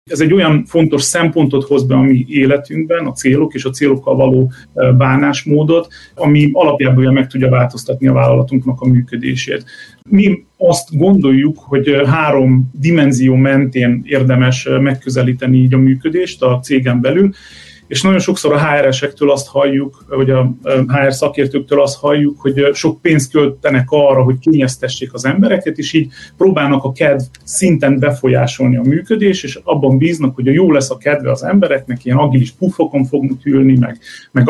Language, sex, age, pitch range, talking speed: Hungarian, male, 30-49, 130-155 Hz, 155 wpm